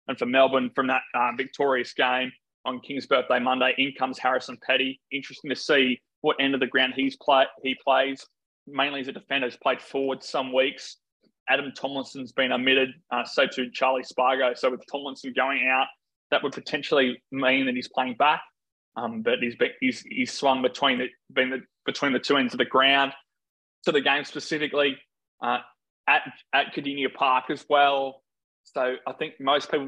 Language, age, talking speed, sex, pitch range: English, 20-39, 185 wpm, male, 130-135 Hz